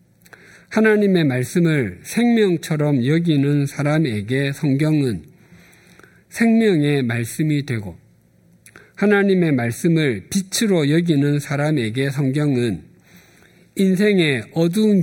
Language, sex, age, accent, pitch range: Korean, male, 50-69, native, 125-180 Hz